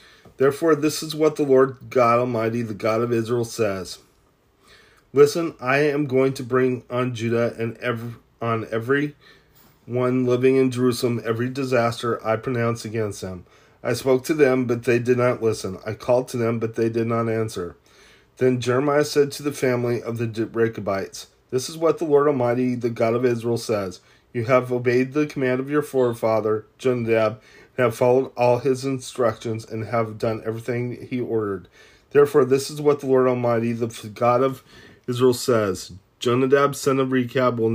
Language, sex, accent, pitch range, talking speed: English, male, American, 115-130 Hz, 175 wpm